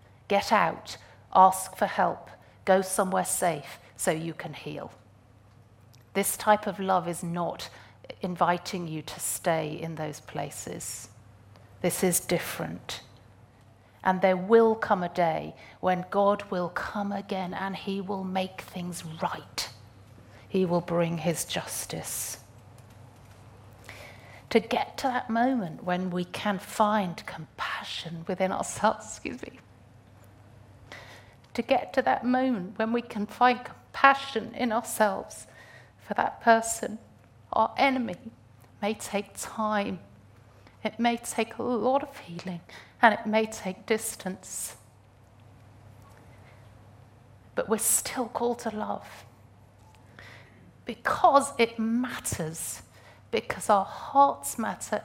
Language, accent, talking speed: English, British, 120 wpm